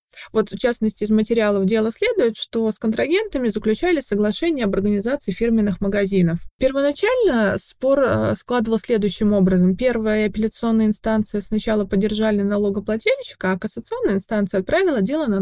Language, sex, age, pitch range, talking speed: Russian, female, 20-39, 205-245 Hz, 130 wpm